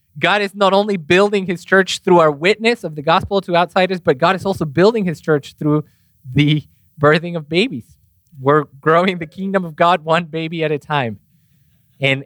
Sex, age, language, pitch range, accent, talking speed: male, 20-39, English, 115-165 Hz, American, 190 wpm